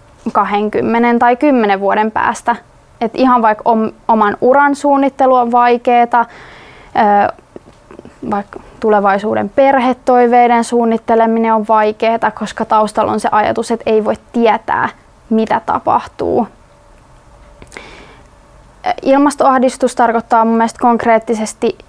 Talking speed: 95 wpm